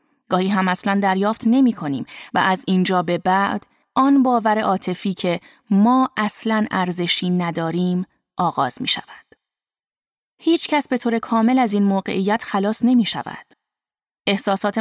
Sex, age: female, 20-39